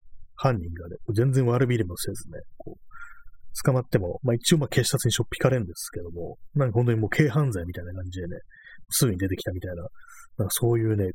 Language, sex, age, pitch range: Japanese, male, 30-49, 95-130 Hz